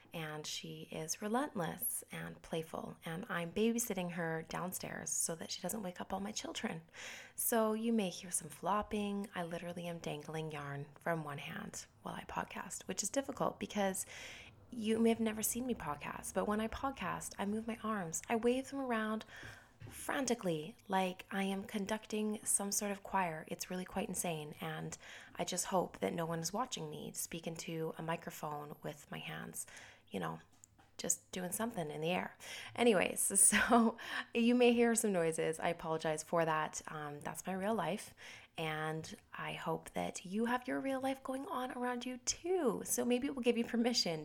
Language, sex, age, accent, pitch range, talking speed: English, female, 20-39, American, 165-225 Hz, 185 wpm